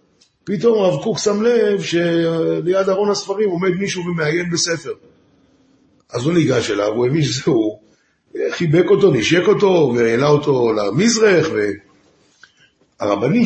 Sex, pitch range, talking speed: male, 130-185 Hz, 125 wpm